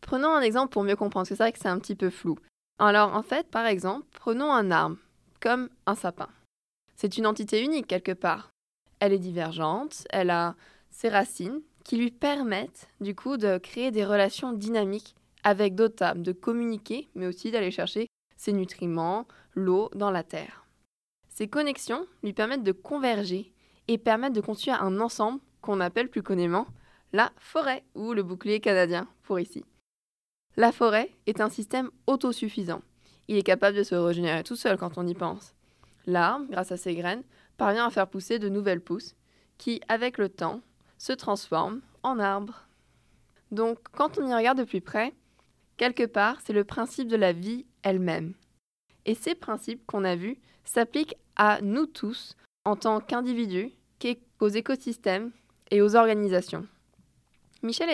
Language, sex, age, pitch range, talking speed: French, female, 20-39, 190-240 Hz, 165 wpm